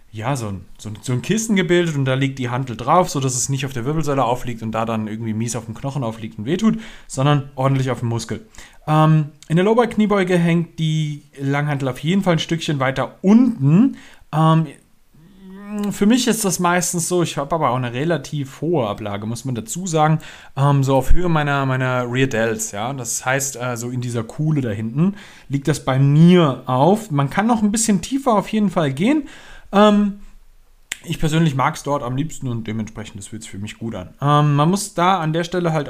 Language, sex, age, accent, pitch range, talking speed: German, male, 30-49, German, 130-175 Hz, 210 wpm